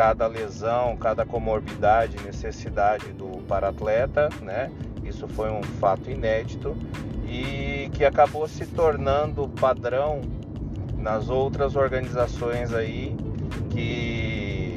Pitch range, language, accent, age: 110-130 Hz, Portuguese, Brazilian, 40-59